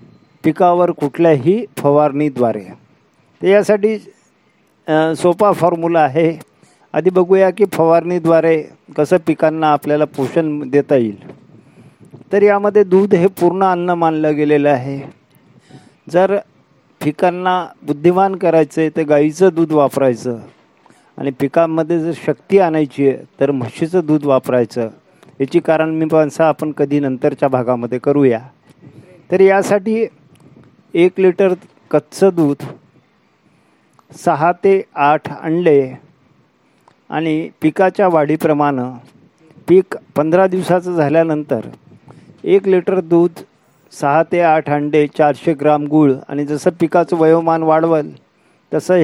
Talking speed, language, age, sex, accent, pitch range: 105 wpm, Marathi, 50-69, male, native, 145-180 Hz